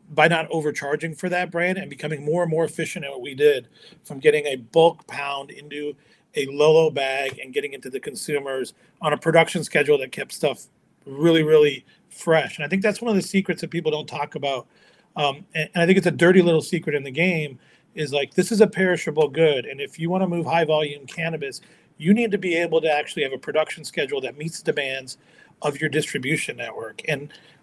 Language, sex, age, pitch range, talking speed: English, male, 40-59, 155-190 Hz, 220 wpm